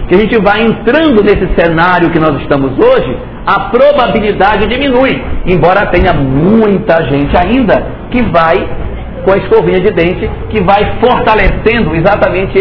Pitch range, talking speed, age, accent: 175-240 Hz, 145 wpm, 60-79, Brazilian